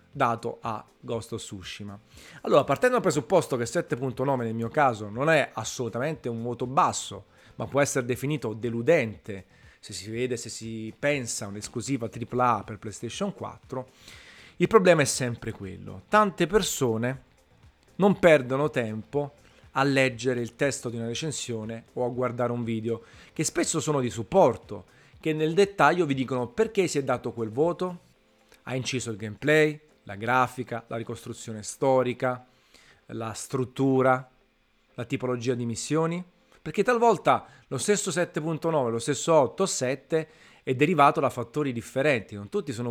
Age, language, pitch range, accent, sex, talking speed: 30-49, Italian, 115-150 Hz, native, male, 150 wpm